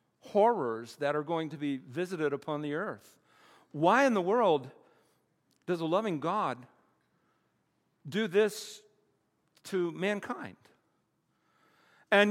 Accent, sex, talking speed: American, male, 110 wpm